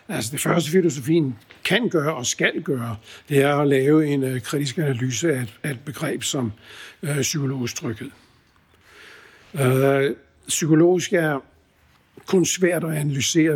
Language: Danish